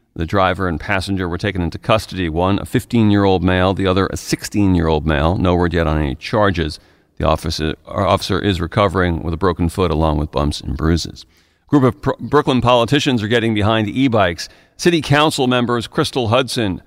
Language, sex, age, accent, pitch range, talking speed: English, male, 40-59, American, 95-120 Hz, 190 wpm